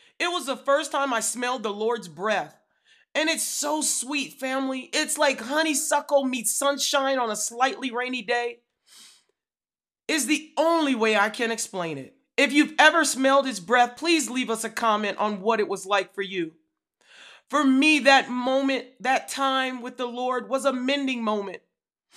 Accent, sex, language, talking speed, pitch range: American, male, English, 175 wpm, 225-280 Hz